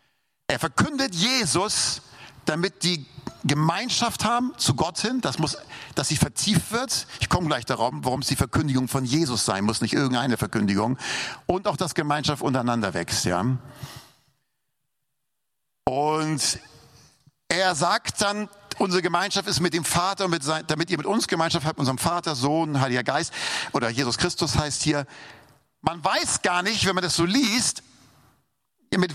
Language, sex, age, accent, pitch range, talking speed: German, male, 50-69, German, 135-180 Hz, 160 wpm